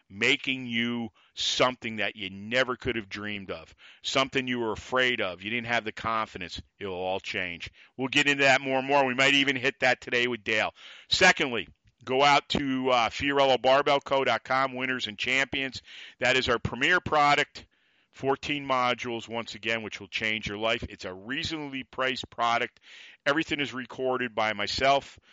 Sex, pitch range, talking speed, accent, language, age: male, 110-135 Hz, 170 wpm, American, English, 50-69